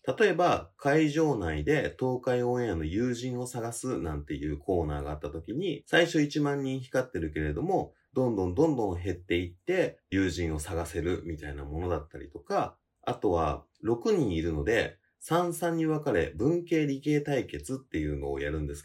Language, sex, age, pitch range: Japanese, male, 30-49, 80-125 Hz